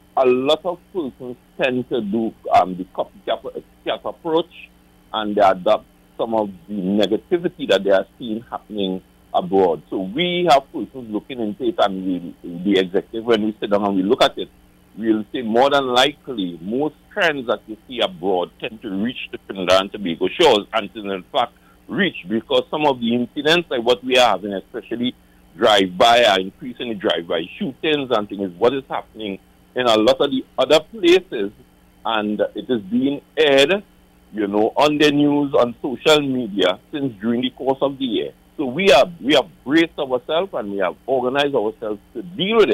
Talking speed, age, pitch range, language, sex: 190 wpm, 60-79, 95-145 Hz, English, male